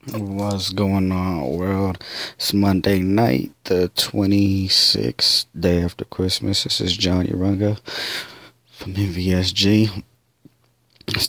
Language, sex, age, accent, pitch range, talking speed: English, male, 20-39, American, 90-105 Hz, 100 wpm